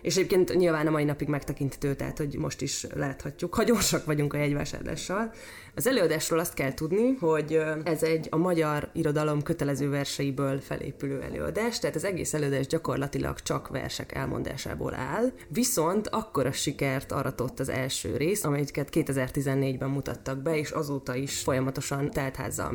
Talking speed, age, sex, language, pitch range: 150 wpm, 20-39, female, Hungarian, 140-170 Hz